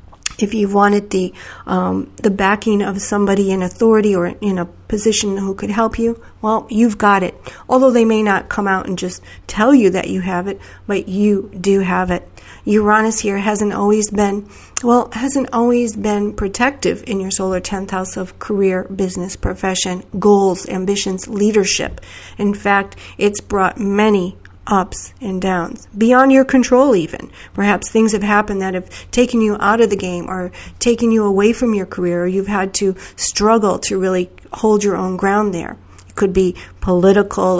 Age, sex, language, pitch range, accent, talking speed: 40-59, female, English, 190-215 Hz, American, 175 wpm